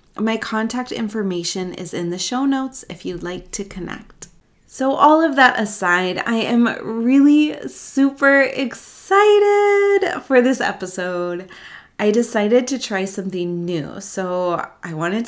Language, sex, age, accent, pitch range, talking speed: English, female, 20-39, American, 190-250 Hz, 140 wpm